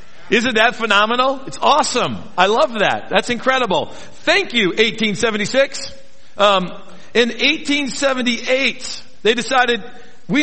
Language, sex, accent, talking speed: English, male, American, 110 wpm